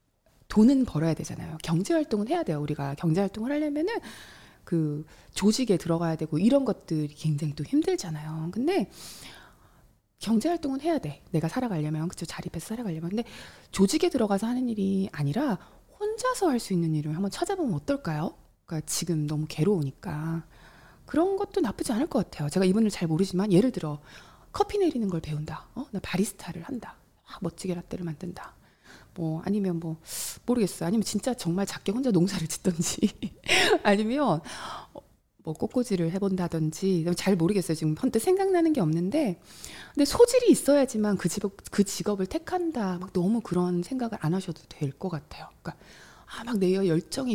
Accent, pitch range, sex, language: native, 165-245 Hz, female, Korean